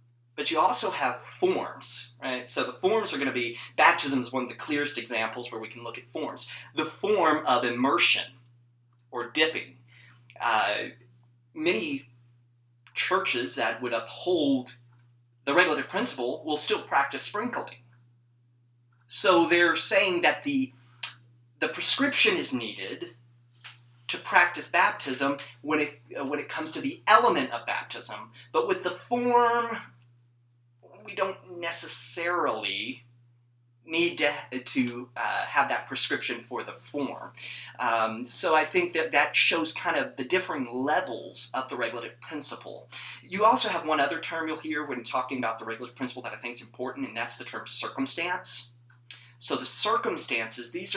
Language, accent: English, American